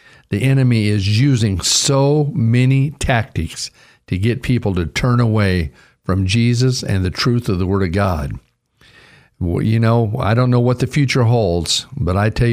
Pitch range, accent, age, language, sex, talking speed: 110-140 Hz, American, 60-79, English, male, 170 wpm